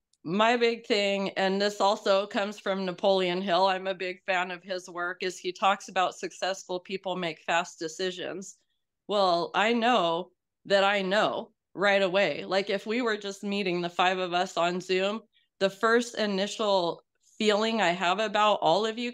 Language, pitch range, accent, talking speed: English, 180-205 Hz, American, 175 wpm